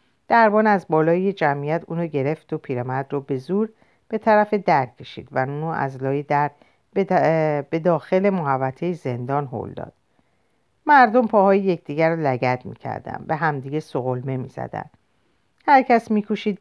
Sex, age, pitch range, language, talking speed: female, 50-69, 140-210 Hz, Persian, 140 wpm